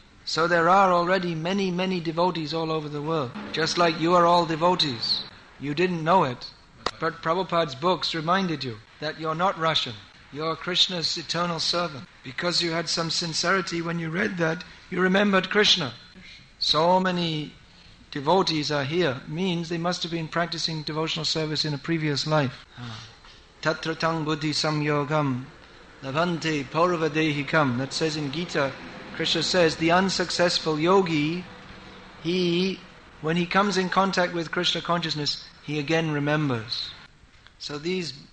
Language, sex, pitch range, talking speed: English, male, 150-175 Hz, 145 wpm